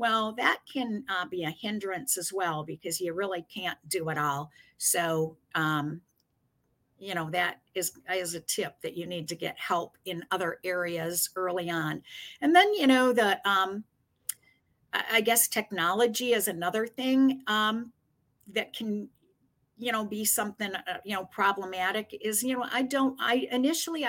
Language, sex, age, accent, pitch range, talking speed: English, female, 50-69, American, 170-215 Hz, 165 wpm